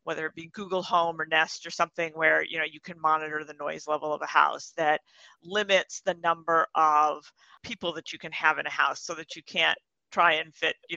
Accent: American